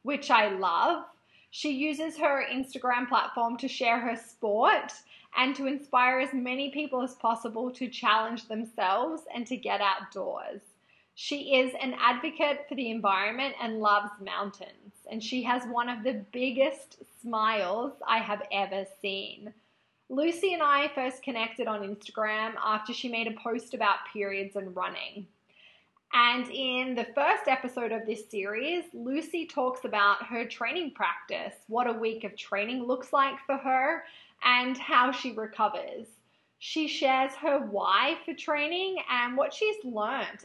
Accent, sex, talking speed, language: Australian, female, 150 wpm, English